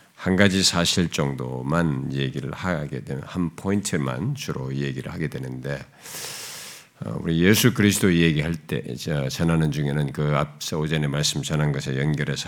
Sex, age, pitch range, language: male, 50-69, 70-90 Hz, Korean